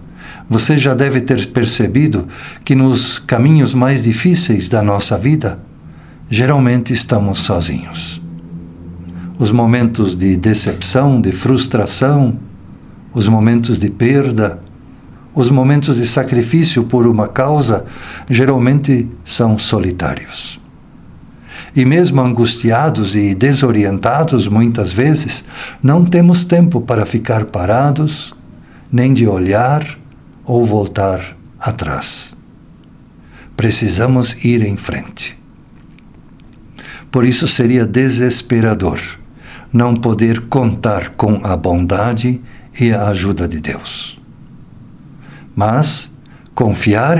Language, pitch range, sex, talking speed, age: Portuguese, 105-135 Hz, male, 95 wpm, 60-79